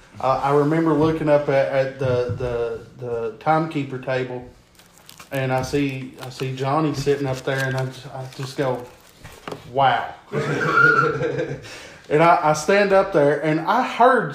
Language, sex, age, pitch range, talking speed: English, male, 20-39, 130-155 Hz, 155 wpm